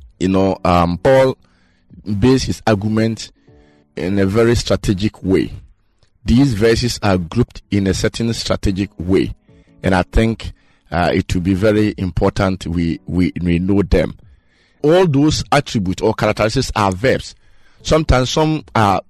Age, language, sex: 50-69, English, male